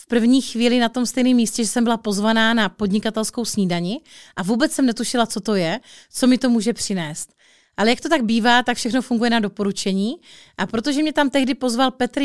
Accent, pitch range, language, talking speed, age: native, 200-250 Hz, Czech, 210 wpm, 30-49